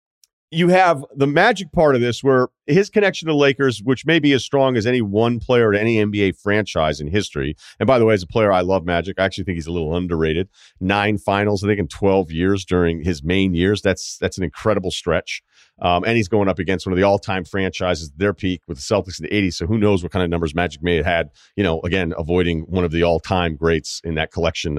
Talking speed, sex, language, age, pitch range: 245 wpm, male, English, 40-59, 95-135 Hz